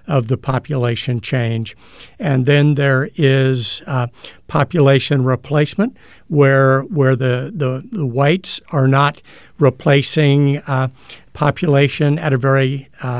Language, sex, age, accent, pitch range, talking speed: English, male, 60-79, American, 130-150 Hz, 120 wpm